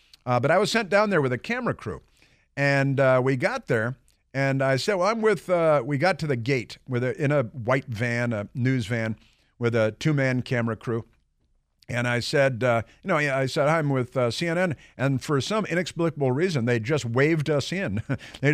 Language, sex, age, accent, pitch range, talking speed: English, male, 50-69, American, 115-145 Hz, 200 wpm